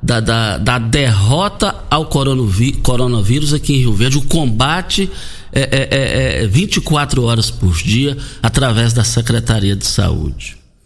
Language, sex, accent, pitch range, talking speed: Portuguese, male, Brazilian, 105-155 Hz, 145 wpm